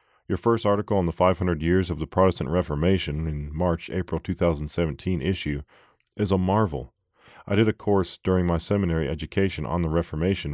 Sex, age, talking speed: male, 40-59, 165 wpm